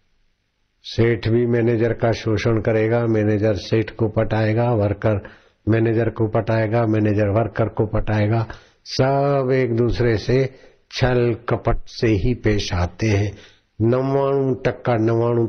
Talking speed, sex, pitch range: 110 wpm, male, 95-120 Hz